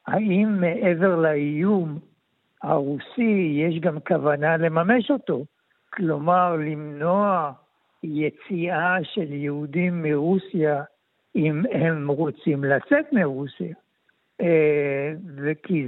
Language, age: Hebrew, 60-79